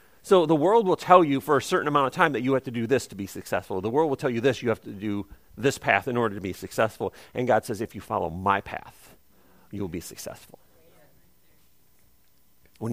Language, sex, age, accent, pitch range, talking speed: English, male, 40-59, American, 100-140 Hz, 230 wpm